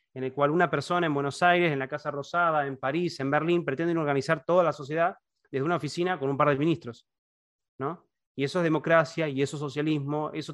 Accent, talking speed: Argentinian, 220 wpm